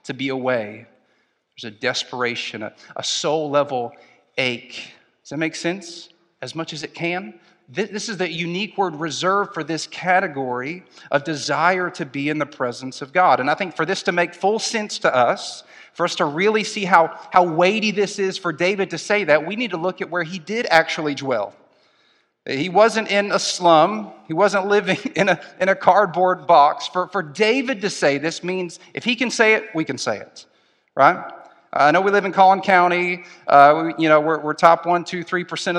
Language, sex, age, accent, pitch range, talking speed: English, male, 40-59, American, 155-190 Hz, 205 wpm